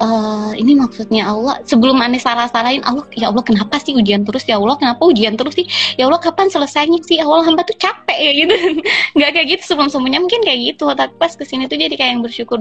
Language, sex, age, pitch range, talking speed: Indonesian, female, 20-39, 220-275 Hz, 225 wpm